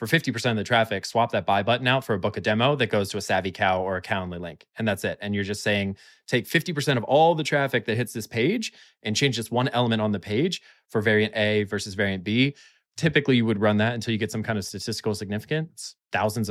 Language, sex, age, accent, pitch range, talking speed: English, male, 20-39, American, 105-125 Hz, 255 wpm